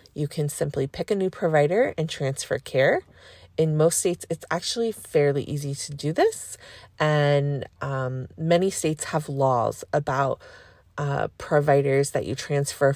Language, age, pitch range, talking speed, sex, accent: English, 30-49, 140-185 Hz, 150 wpm, female, American